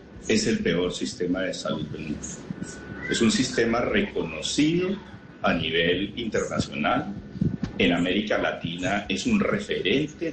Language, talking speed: Spanish, 120 wpm